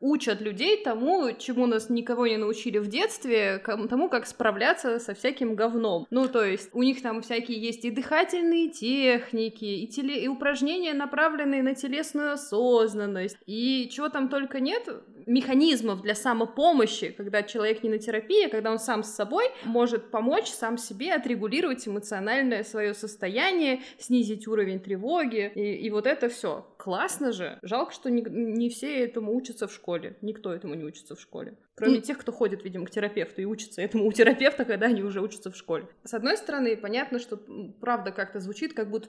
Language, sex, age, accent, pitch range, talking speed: Russian, female, 20-39, native, 215-260 Hz, 180 wpm